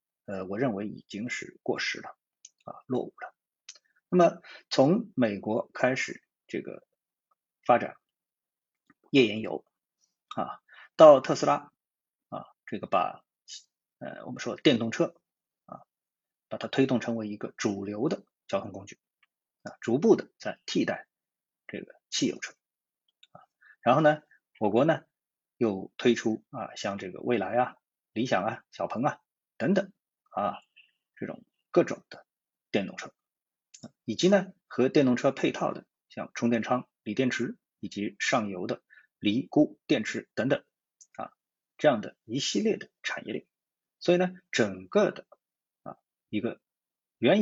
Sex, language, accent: male, Chinese, native